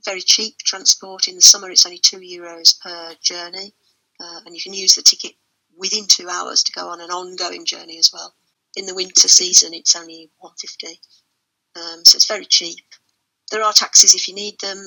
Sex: female